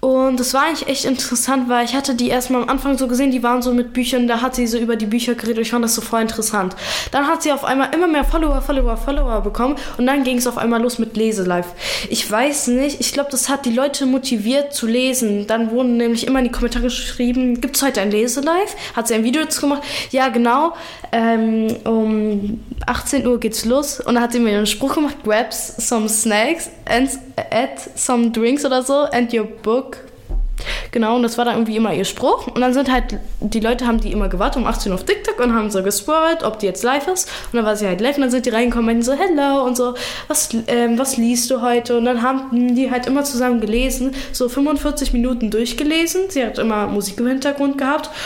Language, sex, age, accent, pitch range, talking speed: German, female, 10-29, German, 230-270 Hz, 235 wpm